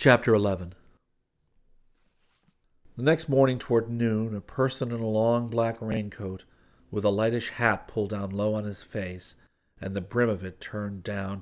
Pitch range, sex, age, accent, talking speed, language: 95-110 Hz, male, 50-69, American, 165 wpm, English